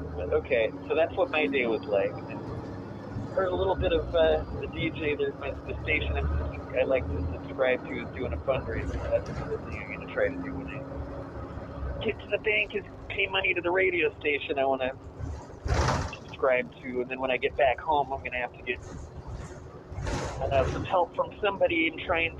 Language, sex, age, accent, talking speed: English, male, 30-49, American, 210 wpm